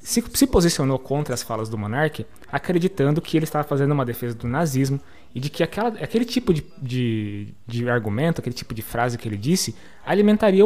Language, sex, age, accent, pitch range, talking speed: Portuguese, male, 20-39, Brazilian, 130-195 Hz, 195 wpm